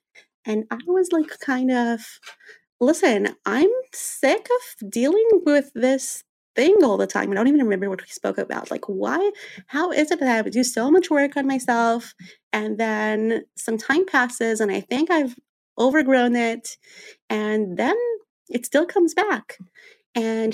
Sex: female